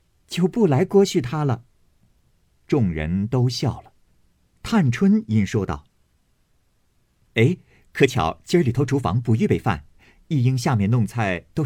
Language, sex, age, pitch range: Chinese, male, 50-69, 85-130 Hz